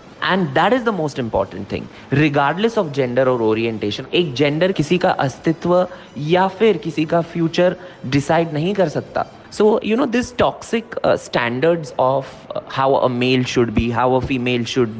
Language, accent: Hindi, native